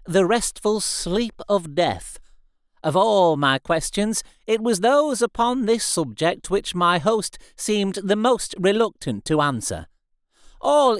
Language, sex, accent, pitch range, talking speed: English, male, British, 140-205 Hz, 135 wpm